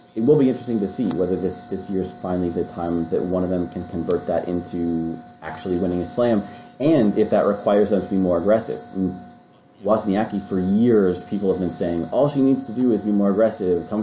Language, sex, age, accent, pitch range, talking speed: English, male, 30-49, American, 90-105 Hz, 225 wpm